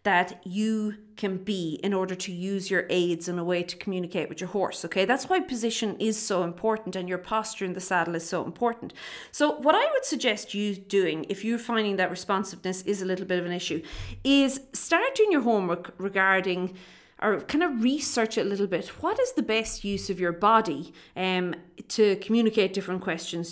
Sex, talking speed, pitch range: female, 205 wpm, 185-245 Hz